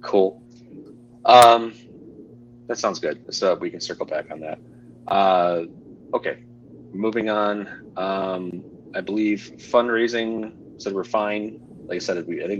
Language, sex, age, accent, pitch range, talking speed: English, male, 30-49, American, 105-120 Hz, 135 wpm